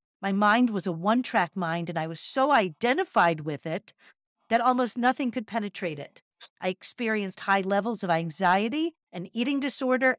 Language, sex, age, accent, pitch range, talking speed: English, female, 50-69, American, 180-235 Hz, 165 wpm